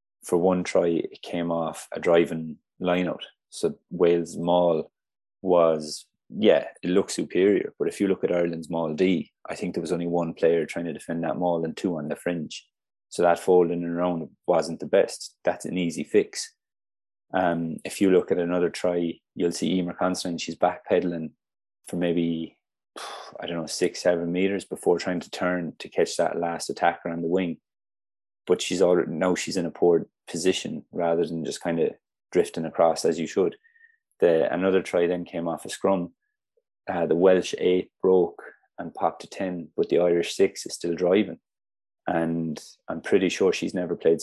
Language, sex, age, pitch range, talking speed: English, male, 20-39, 85-95 Hz, 185 wpm